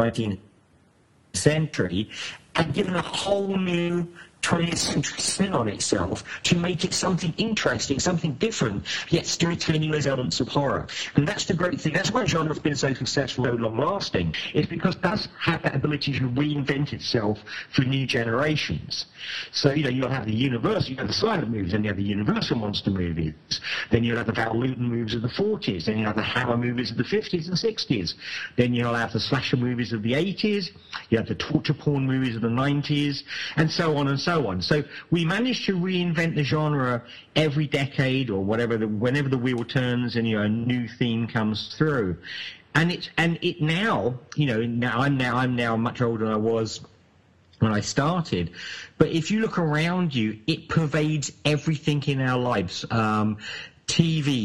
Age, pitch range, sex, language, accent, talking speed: 50-69, 115-160 Hz, male, English, British, 195 wpm